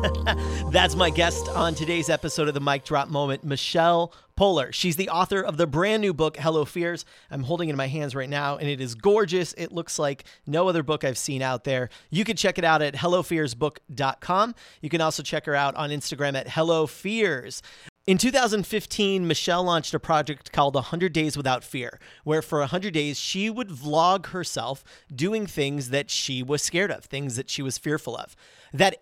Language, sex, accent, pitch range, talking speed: English, male, American, 140-175 Hz, 195 wpm